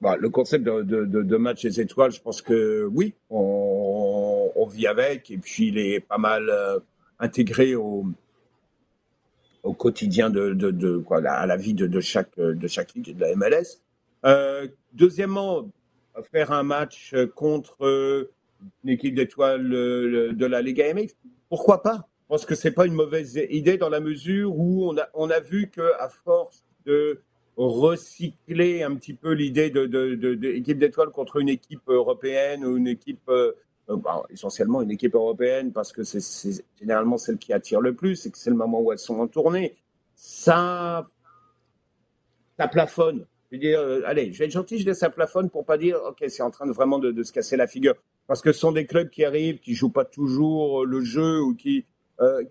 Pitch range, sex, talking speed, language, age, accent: 130-200 Hz, male, 195 wpm, French, 50-69, French